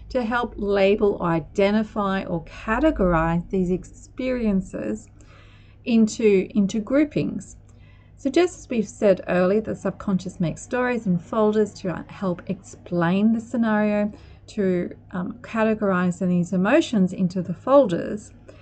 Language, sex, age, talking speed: English, female, 30-49, 115 wpm